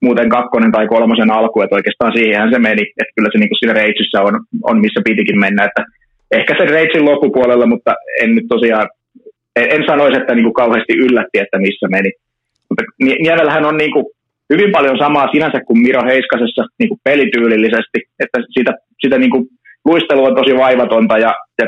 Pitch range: 115-145 Hz